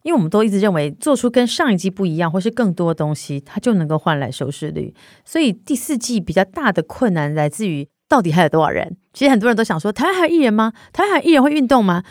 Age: 30-49